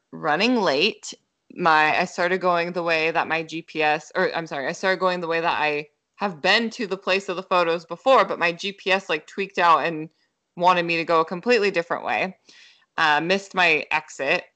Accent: American